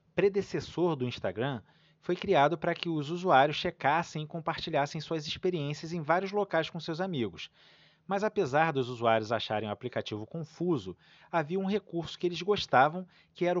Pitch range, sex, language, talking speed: 145-185 Hz, male, Portuguese, 160 wpm